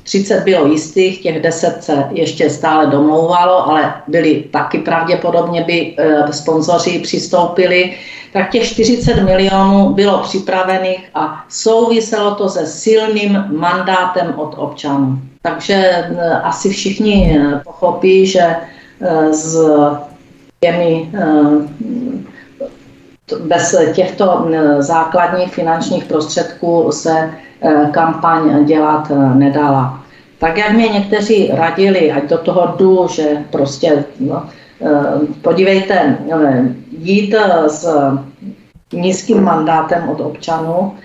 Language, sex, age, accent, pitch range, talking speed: Czech, female, 50-69, native, 155-190 Hz, 90 wpm